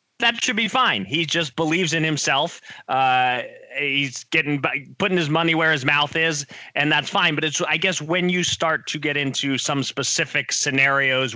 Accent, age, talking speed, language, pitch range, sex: American, 30-49, 185 wpm, English, 125-155 Hz, male